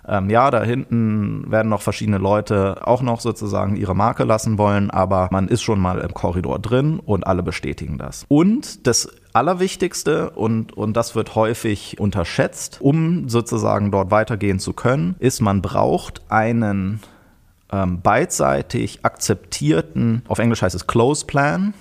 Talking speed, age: 145 wpm, 30-49